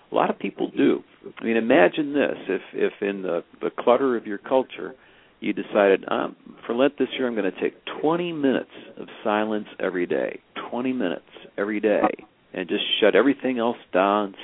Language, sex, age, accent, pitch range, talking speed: English, male, 60-79, American, 100-130 Hz, 185 wpm